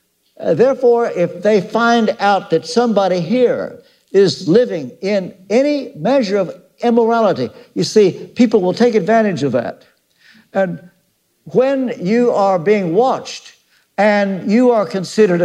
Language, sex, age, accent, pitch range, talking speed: English, male, 60-79, American, 180-235 Hz, 130 wpm